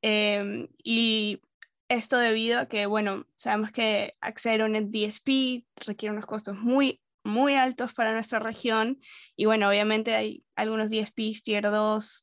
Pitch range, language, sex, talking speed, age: 215-235 Hz, English, female, 145 wpm, 10-29